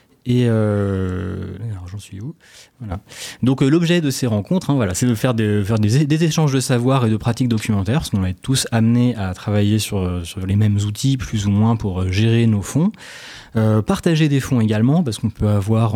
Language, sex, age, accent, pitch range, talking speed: French, male, 20-39, French, 105-125 Hz, 220 wpm